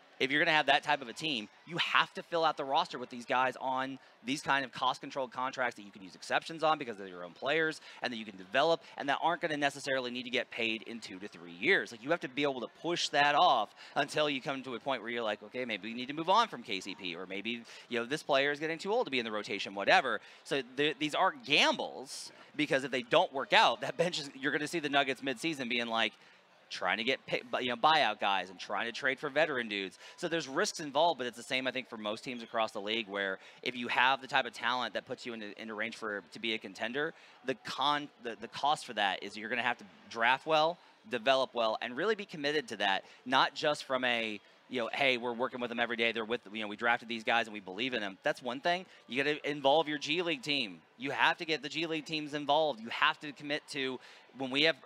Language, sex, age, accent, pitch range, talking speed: English, male, 30-49, American, 115-150 Hz, 280 wpm